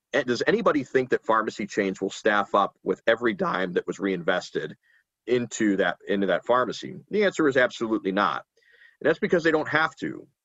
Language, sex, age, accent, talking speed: English, male, 40-59, American, 190 wpm